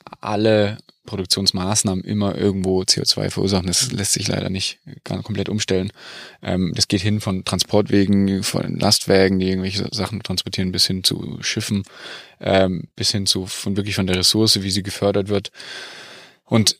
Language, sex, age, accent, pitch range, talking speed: German, male, 20-39, German, 95-110 Hz, 145 wpm